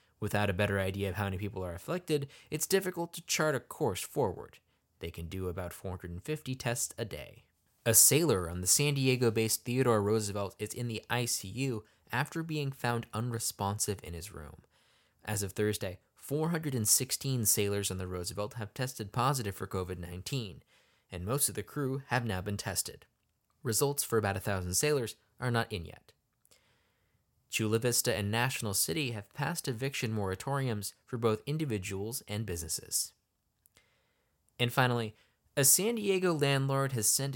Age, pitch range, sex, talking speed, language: 20-39, 100-135 Hz, male, 155 wpm, English